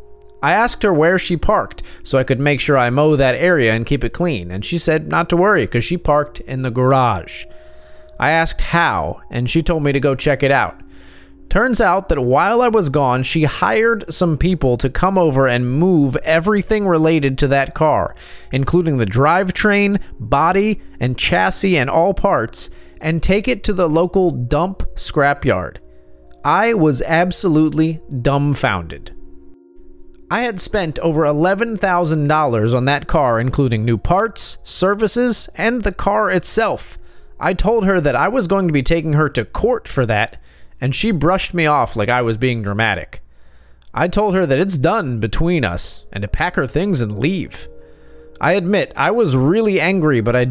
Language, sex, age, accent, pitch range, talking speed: English, male, 30-49, American, 120-180 Hz, 175 wpm